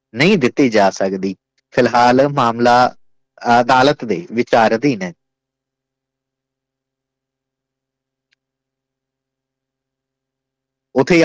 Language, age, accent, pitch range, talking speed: English, 30-49, Indian, 120-135 Hz, 55 wpm